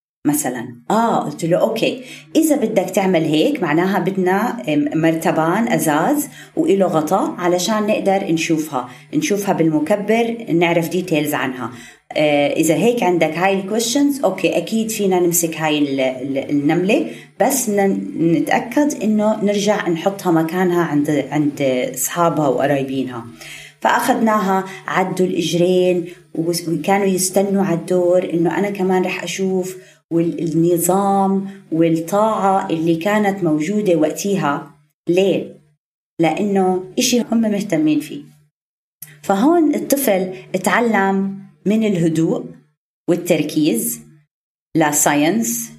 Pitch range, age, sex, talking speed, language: 155-200 Hz, 30-49, female, 100 wpm, Arabic